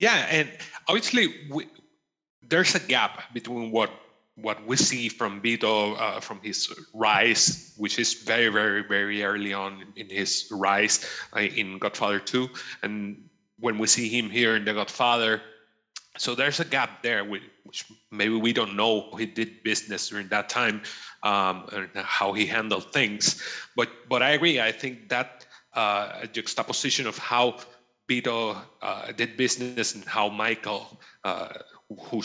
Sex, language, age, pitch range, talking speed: male, English, 30-49, 100-120 Hz, 155 wpm